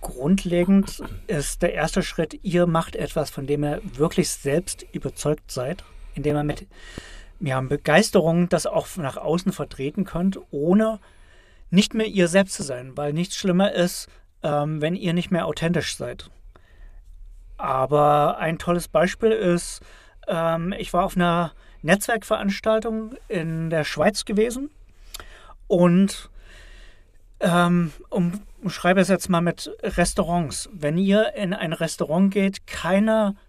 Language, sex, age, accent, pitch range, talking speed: German, male, 40-59, German, 145-195 Hz, 135 wpm